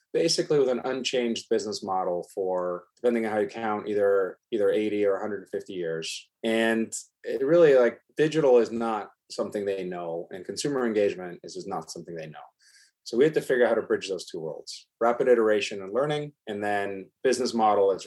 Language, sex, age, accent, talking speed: English, male, 30-49, American, 195 wpm